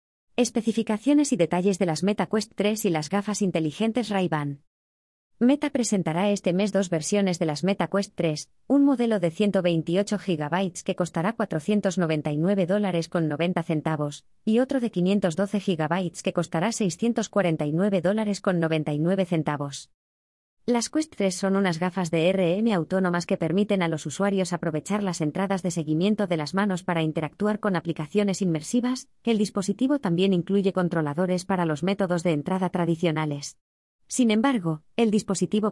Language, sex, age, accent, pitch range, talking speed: Spanish, female, 20-39, Spanish, 165-210 Hz, 140 wpm